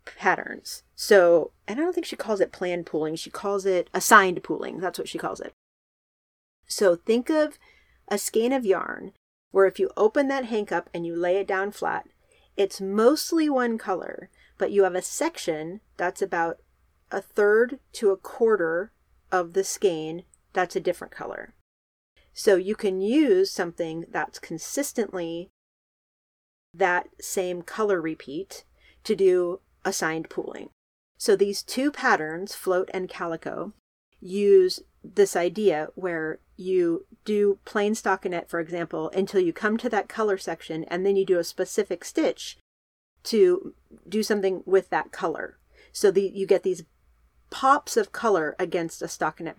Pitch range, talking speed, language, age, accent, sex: 175-235 Hz, 155 wpm, English, 30-49, American, female